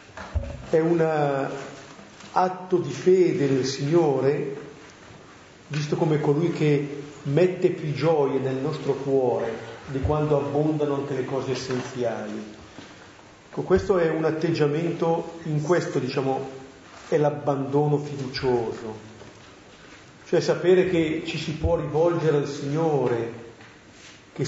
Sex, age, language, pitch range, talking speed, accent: male, 40-59, Italian, 130-160 Hz, 110 wpm, native